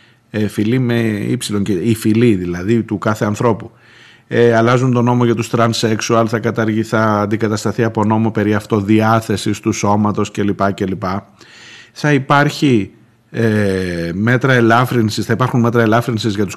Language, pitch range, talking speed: Greek, 105-140 Hz, 135 wpm